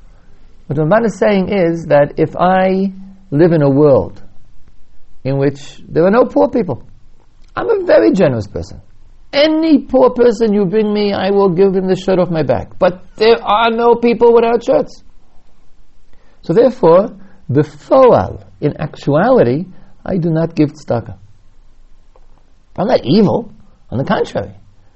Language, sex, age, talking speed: English, male, 60-79, 150 wpm